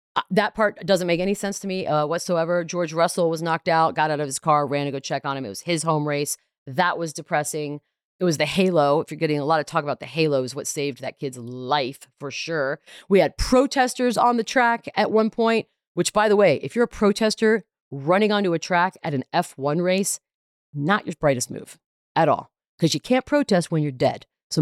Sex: female